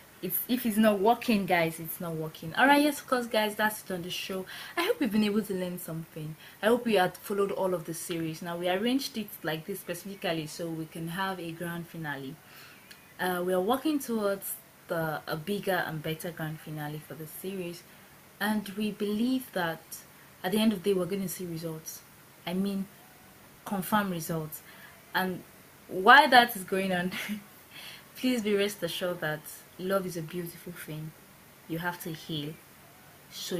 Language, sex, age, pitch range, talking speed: English, female, 20-39, 165-210 Hz, 185 wpm